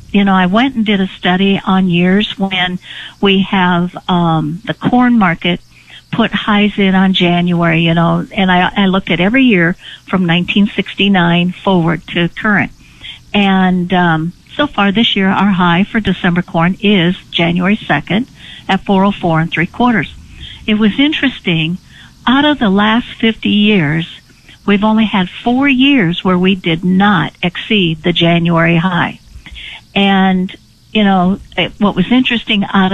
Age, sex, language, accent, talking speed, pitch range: 60-79, female, English, American, 155 wpm, 175-205 Hz